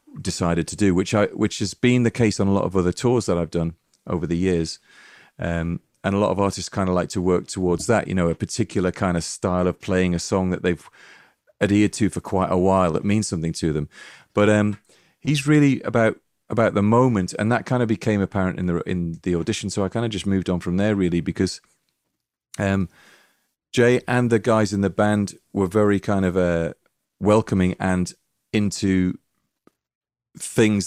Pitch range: 85-105 Hz